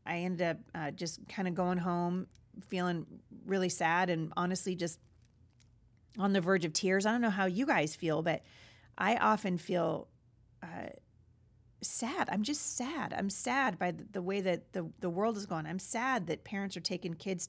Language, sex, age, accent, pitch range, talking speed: English, female, 40-59, American, 175-230 Hz, 190 wpm